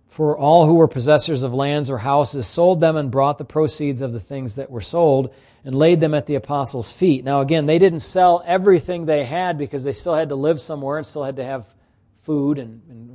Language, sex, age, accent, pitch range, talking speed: English, male, 40-59, American, 115-150 Hz, 235 wpm